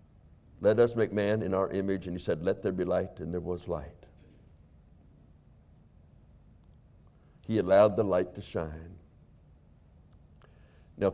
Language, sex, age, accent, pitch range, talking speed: English, male, 60-79, American, 75-115 Hz, 135 wpm